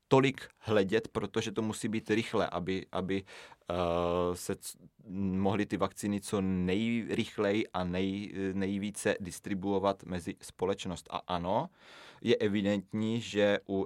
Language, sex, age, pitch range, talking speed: Czech, male, 30-49, 95-110 Hz, 115 wpm